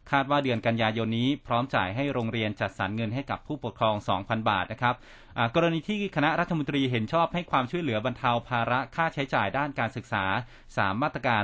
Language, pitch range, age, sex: Thai, 110-140 Hz, 20-39, male